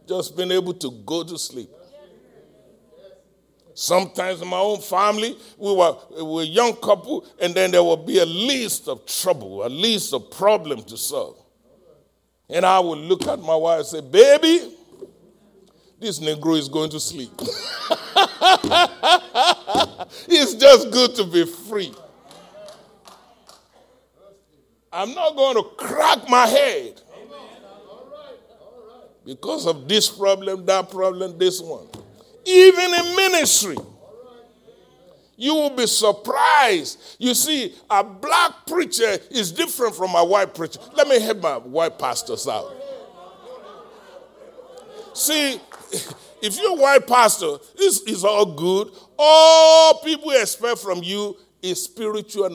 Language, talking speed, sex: English, 130 wpm, male